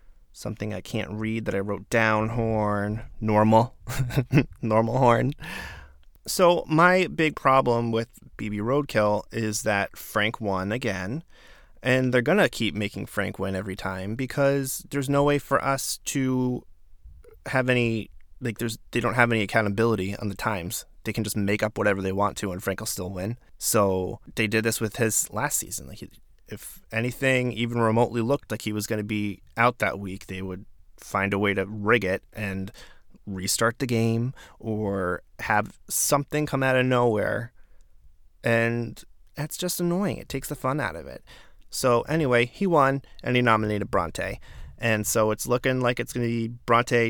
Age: 20-39